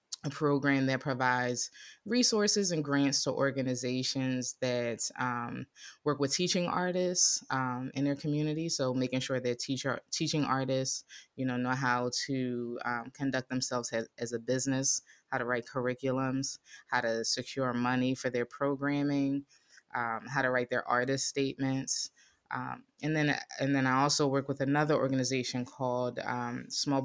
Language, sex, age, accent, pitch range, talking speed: English, female, 20-39, American, 125-140 Hz, 155 wpm